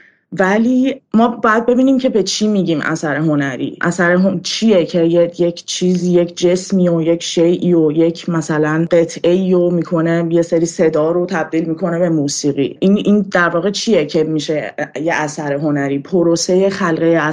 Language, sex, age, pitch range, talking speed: Persian, female, 20-39, 170-205 Hz, 175 wpm